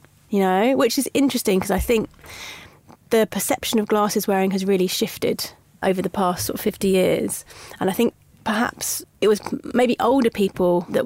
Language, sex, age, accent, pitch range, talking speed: English, female, 30-49, British, 195-225 Hz, 180 wpm